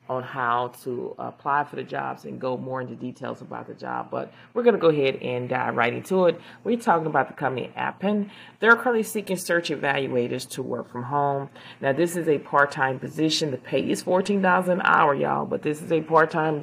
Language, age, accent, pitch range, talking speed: English, 30-49, American, 130-155 Hz, 210 wpm